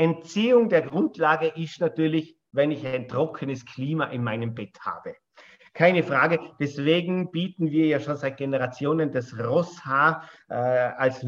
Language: German